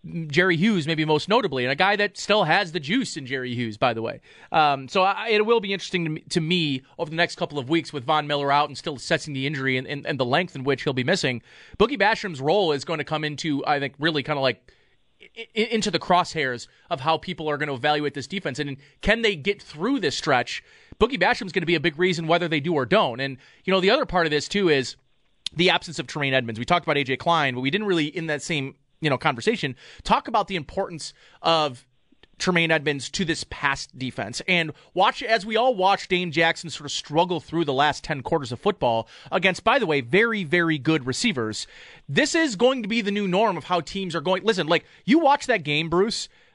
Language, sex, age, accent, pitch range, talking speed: English, male, 30-49, American, 145-190 Hz, 240 wpm